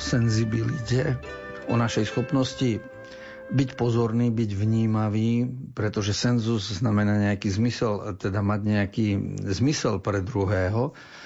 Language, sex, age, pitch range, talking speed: Slovak, male, 50-69, 100-120 Hz, 95 wpm